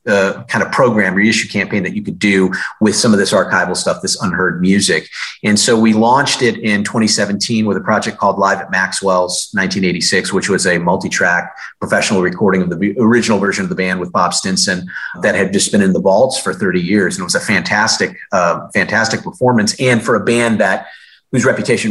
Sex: male